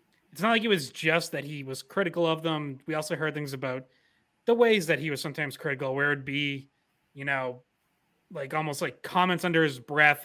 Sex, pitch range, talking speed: male, 140-170 Hz, 210 wpm